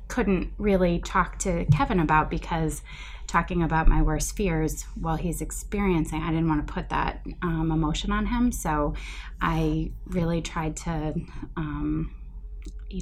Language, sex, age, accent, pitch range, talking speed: English, female, 20-39, American, 150-170 Hz, 150 wpm